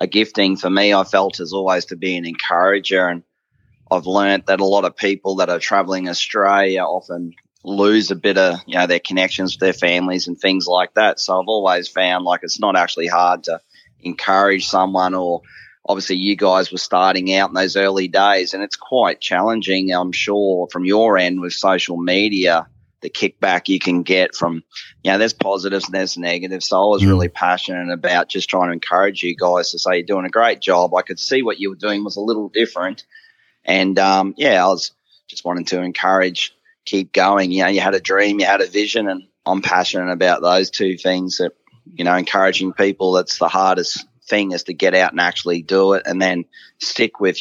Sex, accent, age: male, Australian, 30-49